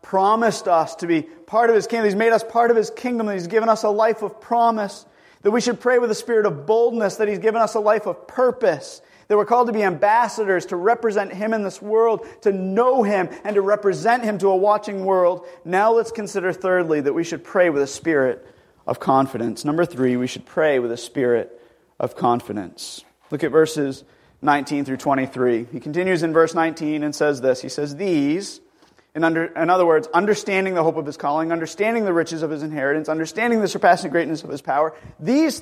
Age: 30-49